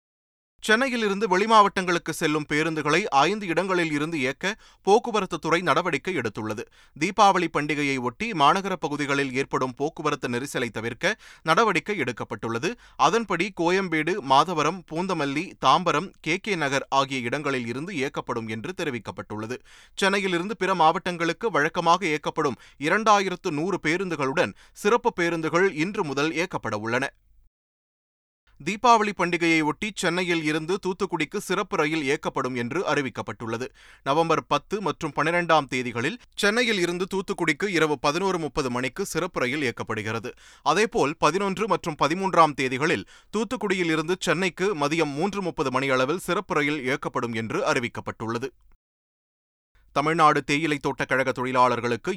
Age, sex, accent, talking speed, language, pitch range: 30-49, male, native, 110 wpm, Tamil, 130-180 Hz